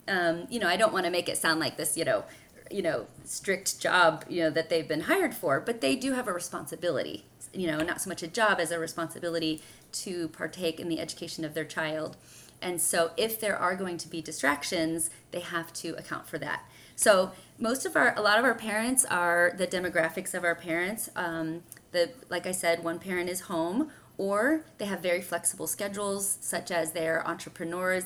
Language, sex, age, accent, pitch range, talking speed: English, female, 30-49, American, 165-195 Hz, 210 wpm